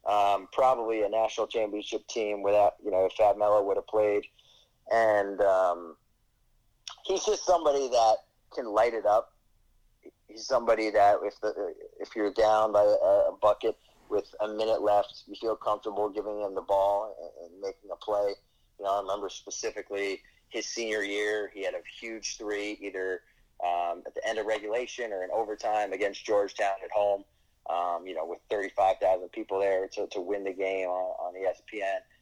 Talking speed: 175 wpm